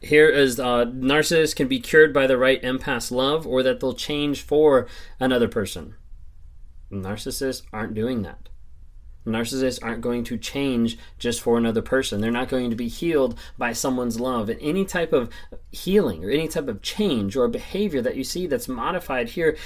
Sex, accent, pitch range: male, American, 95-135 Hz